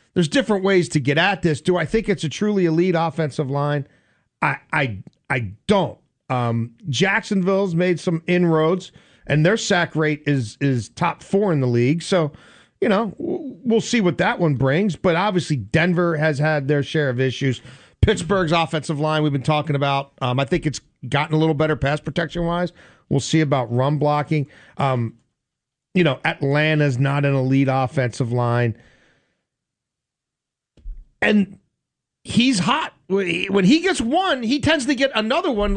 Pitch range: 145-200 Hz